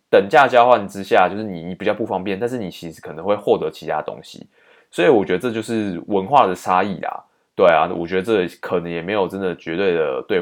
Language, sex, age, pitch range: Chinese, male, 20-39, 90-125 Hz